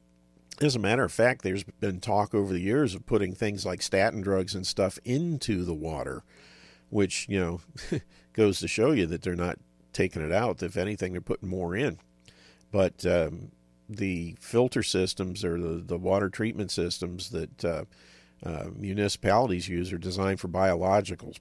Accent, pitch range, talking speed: American, 85-100 Hz, 170 wpm